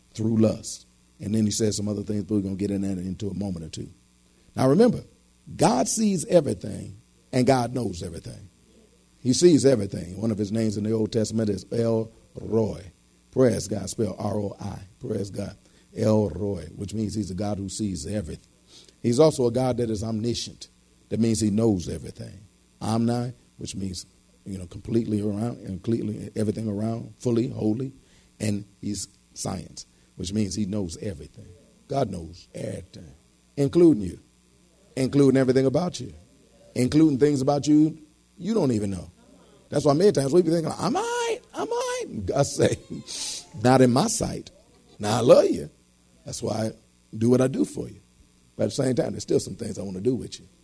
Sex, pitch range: male, 95-125 Hz